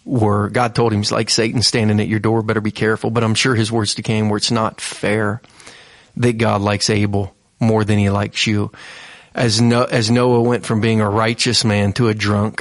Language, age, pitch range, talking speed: English, 30-49, 105-120 Hz, 225 wpm